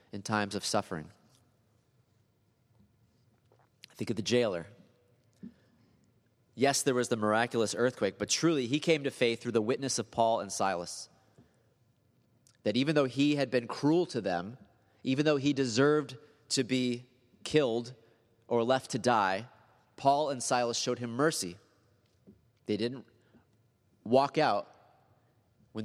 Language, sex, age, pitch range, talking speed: English, male, 30-49, 110-125 Hz, 135 wpm